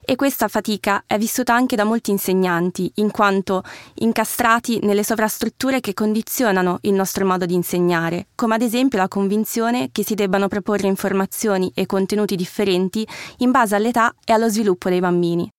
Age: 20-39